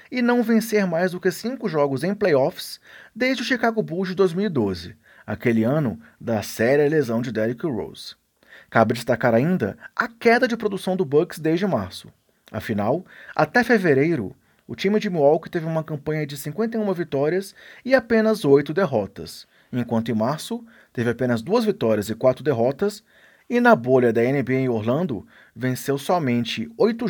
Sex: male